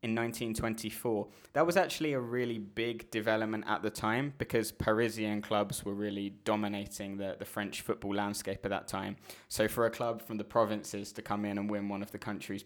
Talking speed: 200 wpm